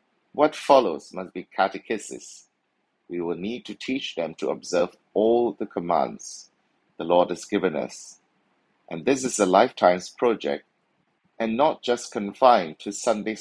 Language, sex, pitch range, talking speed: English, male, 95-120 Hz, 150 wpm